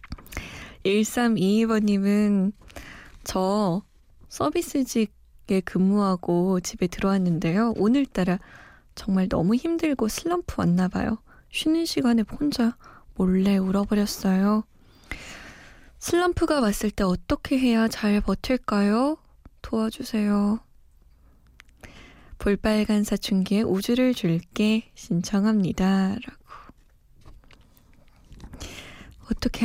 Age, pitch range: 20-39, 190-240 Hz